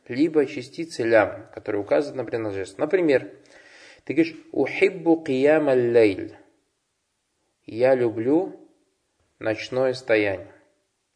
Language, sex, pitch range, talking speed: Russian, male, 135-195 Hz, 90 wpm